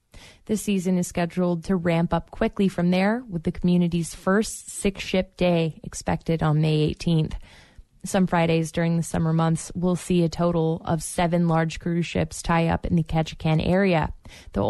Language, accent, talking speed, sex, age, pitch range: English, American, 170 wpm, female, 20-39, 165-185 Hz